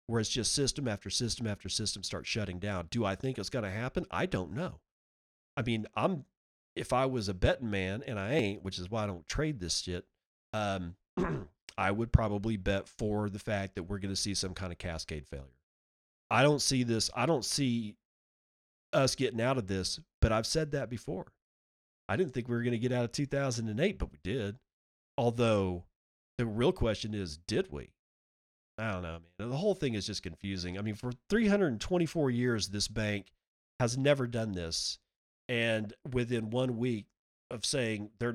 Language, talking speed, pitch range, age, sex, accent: English, 195 wpm, 100-130 Hz, 40-59, male, American